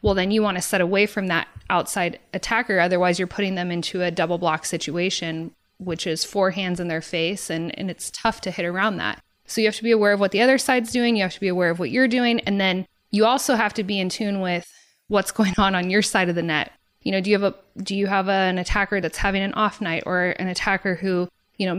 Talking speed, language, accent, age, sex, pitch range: 270 wpm, English, American, 20-39, female, 175-205 Hz